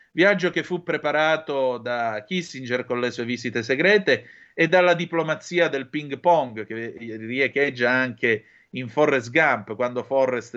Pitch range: 125-155 Hz